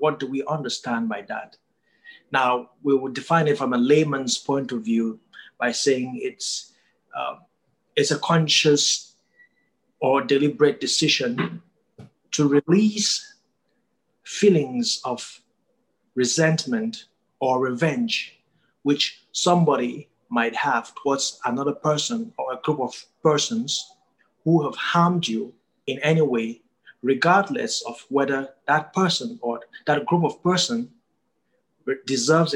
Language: English